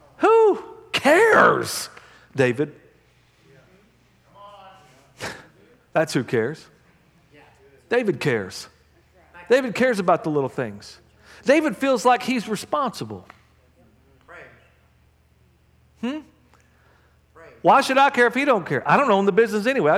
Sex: male